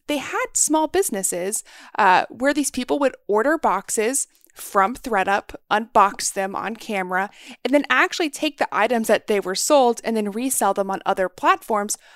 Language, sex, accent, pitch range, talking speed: English, female, American, 195-265 Hz, 170 wpm